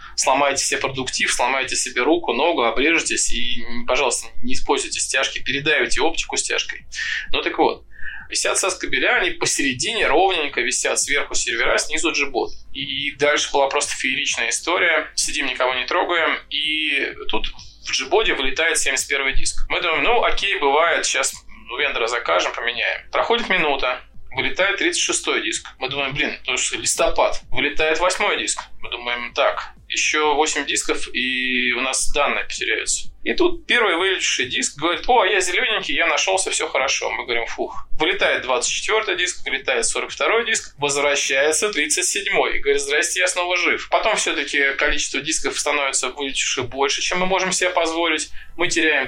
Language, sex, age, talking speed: Russian, male, 20-39, 150 wpm